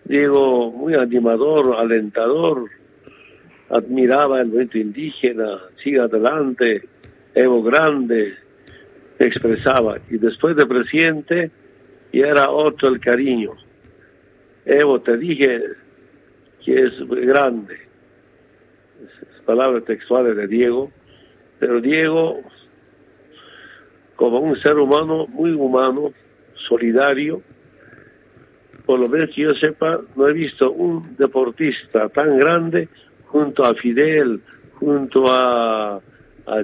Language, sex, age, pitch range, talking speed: Spanish, male, 60-79, 120-150 Hz, 100 wpm